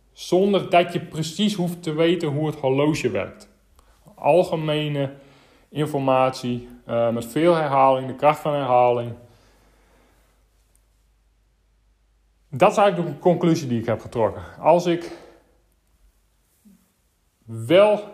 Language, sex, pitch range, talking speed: Dutch, male, 130-165 Hz, 110 wpm